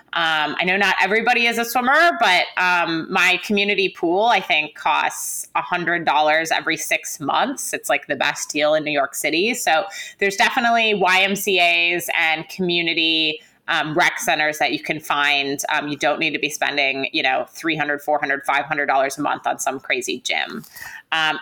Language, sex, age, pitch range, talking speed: English, female, 20-39, 155-205 Hz, 170 wpm